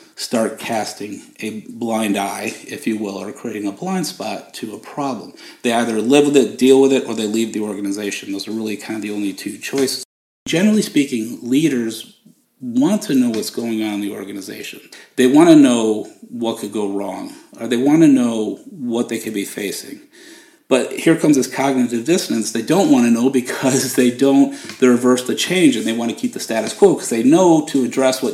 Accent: American